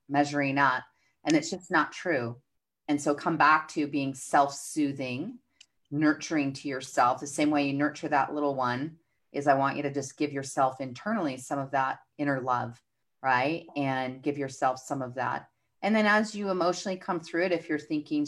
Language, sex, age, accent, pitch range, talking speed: English, female, 30-49, American, 140-165 Hz, 185 wpm